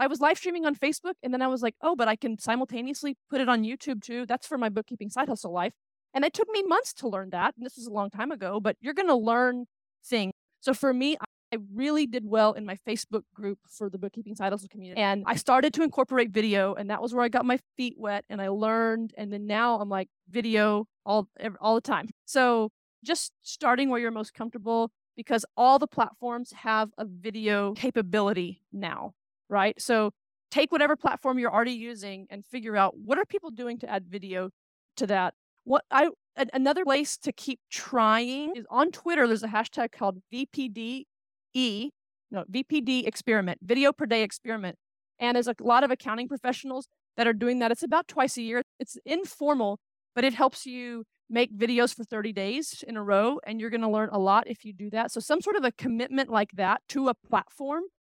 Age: 30-49